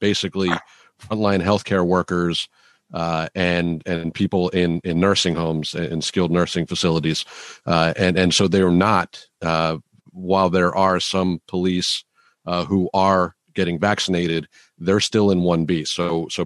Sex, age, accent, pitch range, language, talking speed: male, 40-59, American, 85-95 Hz, English, 155 wpm